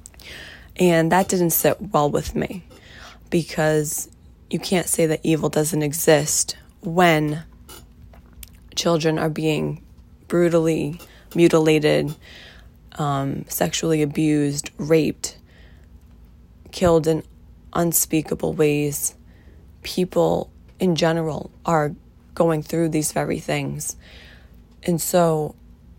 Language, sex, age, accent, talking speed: English, female, 20-39, American, 90 wpm